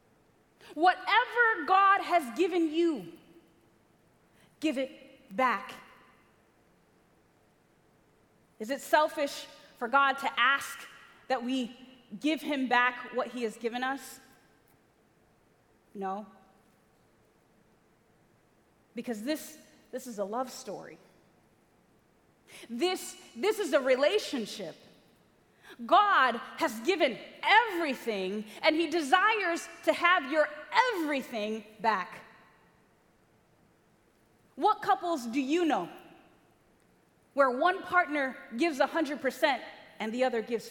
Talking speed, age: 95 wpm, 30-49